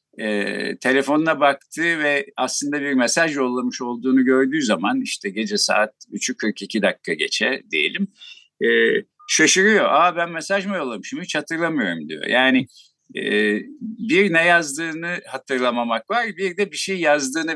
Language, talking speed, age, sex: Turkish, 140 wpm, 50-69, male